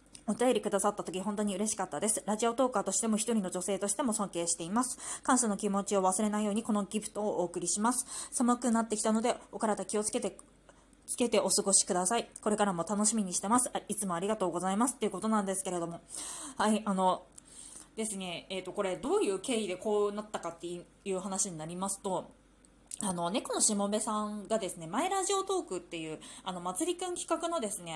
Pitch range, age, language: 190-250 Hz, 20-39, Japanese